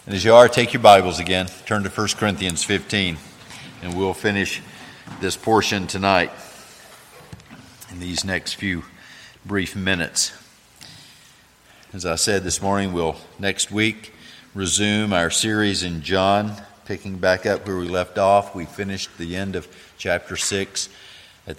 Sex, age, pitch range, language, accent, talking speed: male, 50-69, 85-100 Hz, English, American, 145 wpm